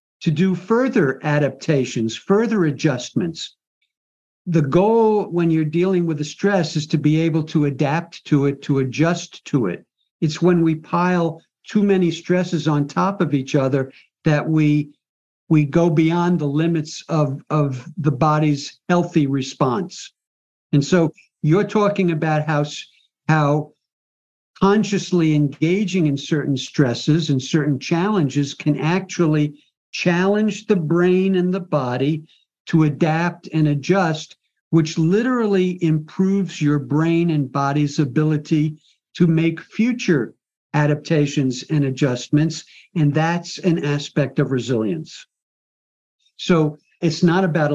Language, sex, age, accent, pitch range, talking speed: English, male, 60-79, American, 145-170 Hz, 130 wpm